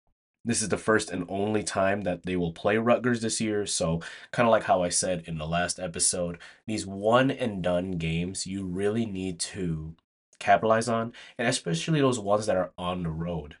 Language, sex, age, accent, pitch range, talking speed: English, male, 20-39, American, 85-110 Hz, 200 wpm